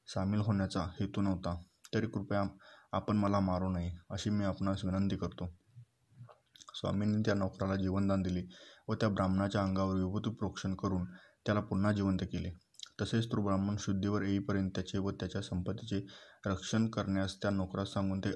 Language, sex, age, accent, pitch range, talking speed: Marathi, male, 20-39, native, 95-105 Hz, 150 wpm